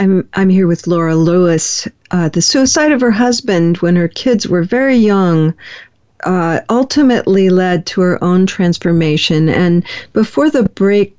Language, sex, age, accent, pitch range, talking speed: English, female, 50-69, American, 170-225 Hz, 155 wpm